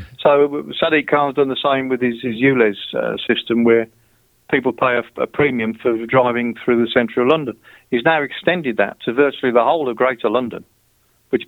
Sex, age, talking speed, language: male, 50-69, 195 wpm, English